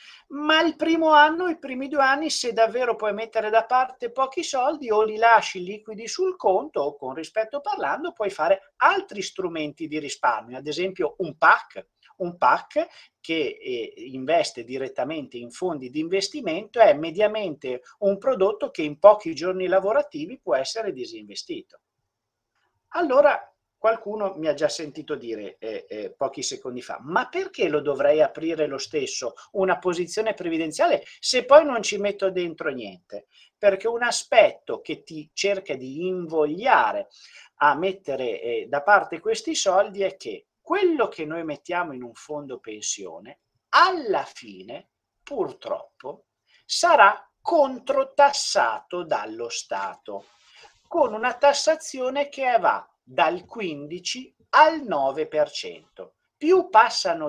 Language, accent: Italian, native